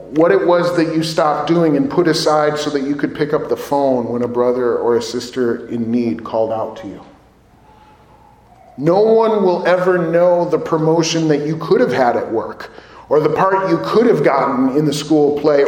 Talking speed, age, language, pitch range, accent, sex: 210 wpm, 40-59, English, 125-170 Hz, American, male